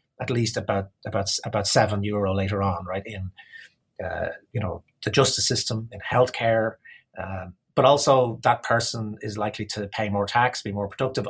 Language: English